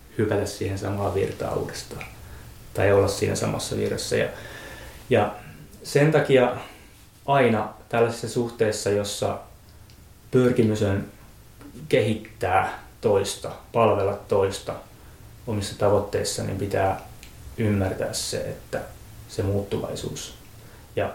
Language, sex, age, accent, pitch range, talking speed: Finnish, male, 20-39, native, 100-115 Hz, 95 wpm